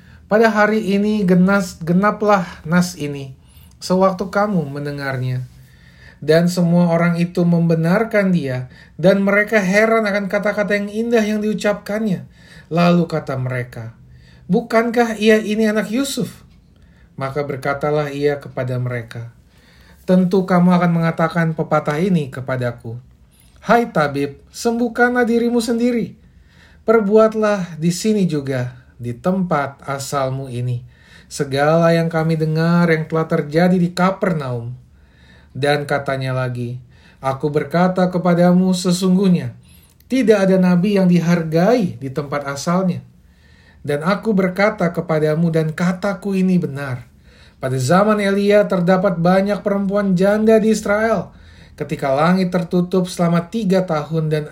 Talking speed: 115 wpm